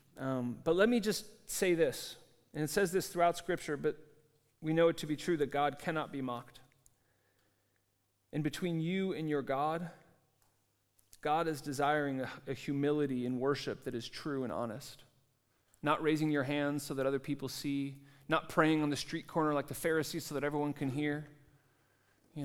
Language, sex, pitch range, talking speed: English, male, 120-155 Hz, 180 wpm